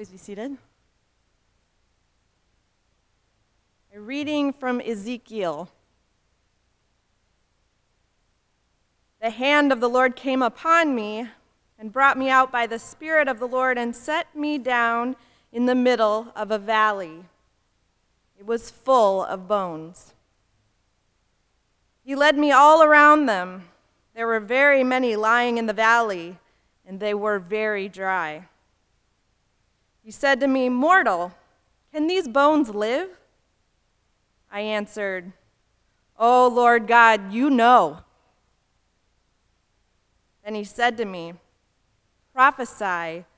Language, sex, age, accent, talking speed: English, female, 30-49, American, 110 wpm